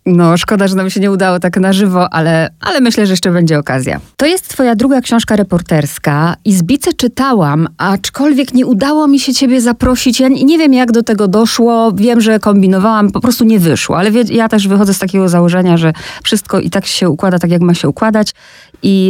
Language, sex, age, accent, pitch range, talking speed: Polish, female, 30-49, native, 170-220 Hz, 215 wpm